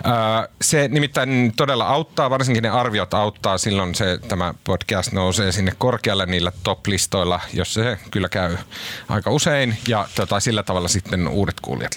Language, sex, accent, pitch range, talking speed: Finnish, male, native, 95-125 Hz, 150 wpm